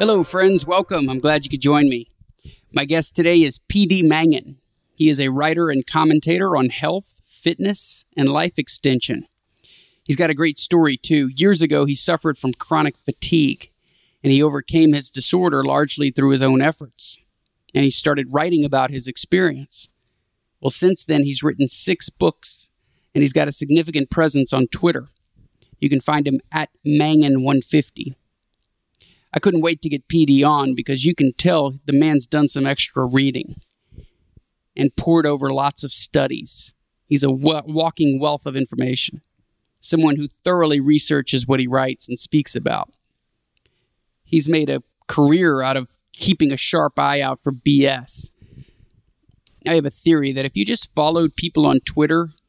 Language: English